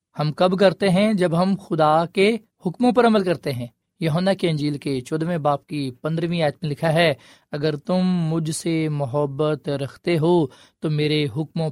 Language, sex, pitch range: Urdu, male, 145-185 Hz